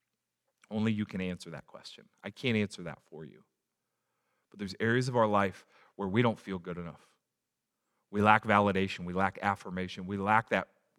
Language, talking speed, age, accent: English, 180 wpm, 30-49, American